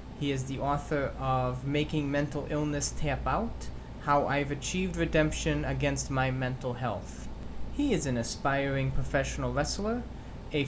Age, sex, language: 20-39, male, English